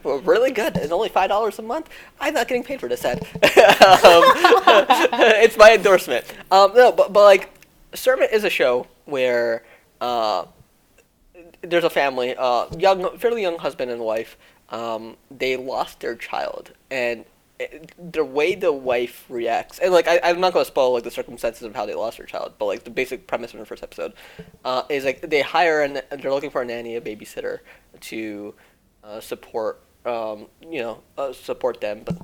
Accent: American